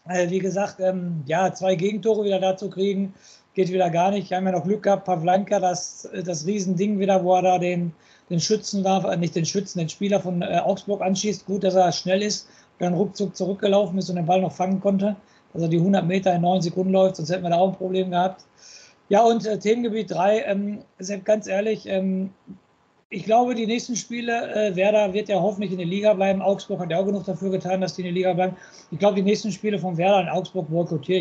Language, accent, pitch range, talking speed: German, German, 185-220 Hz, 220 wpm